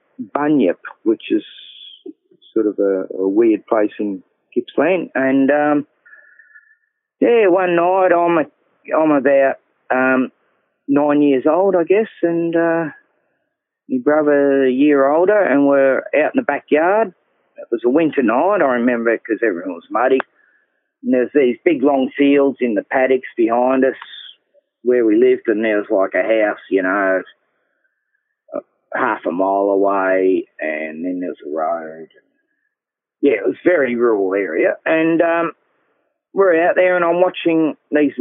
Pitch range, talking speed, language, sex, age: 130-205 Hz, 150 wpm, English, male, 40-59